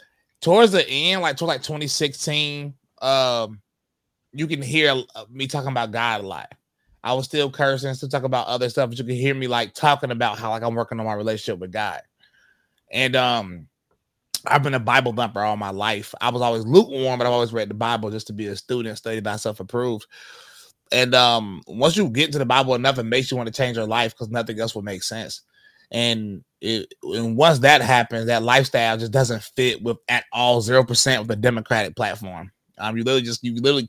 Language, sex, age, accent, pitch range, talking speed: English, male, 20-39, American, 110-130 Hz, 215 wpm